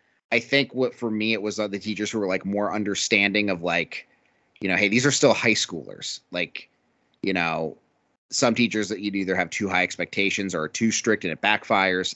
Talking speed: 215 wpm